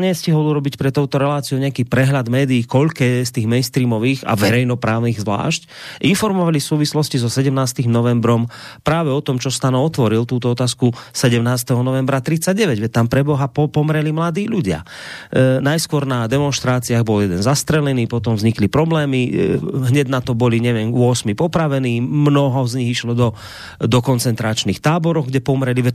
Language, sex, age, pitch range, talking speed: Slovak, male, 30-49, 120-160 Hz, 155 wpm